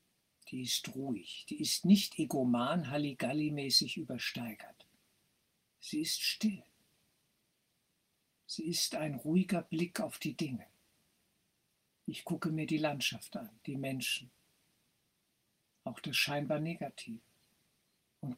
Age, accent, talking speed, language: 60-79, German, 110 wpm, German